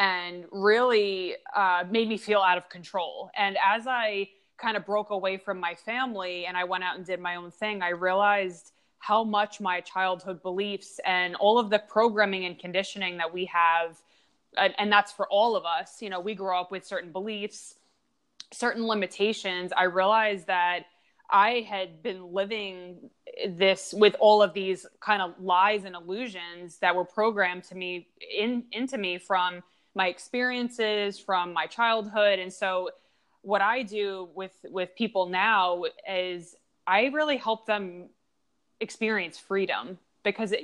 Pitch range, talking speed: 180-215 Hz, 160 wpm